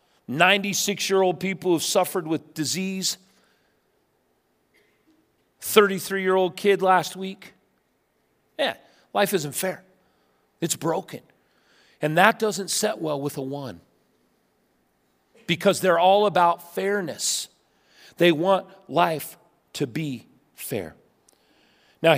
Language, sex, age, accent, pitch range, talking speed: English, male, 40-59, American, 155-200 Hz, 95 wpm